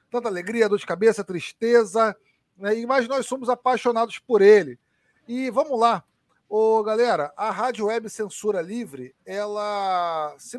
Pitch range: 190-245 Hz